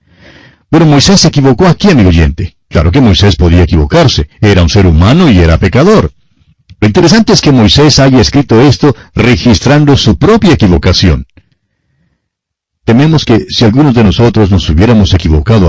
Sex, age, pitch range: male, 50-69, 90-125 Hz